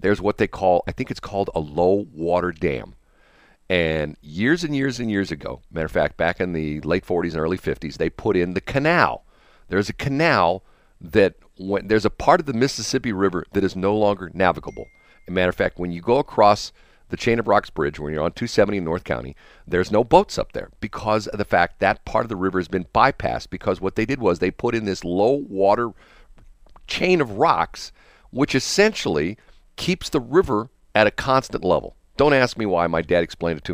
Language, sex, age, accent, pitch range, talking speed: English, male, 50-69, American, 90-125 Hz, 210 wpm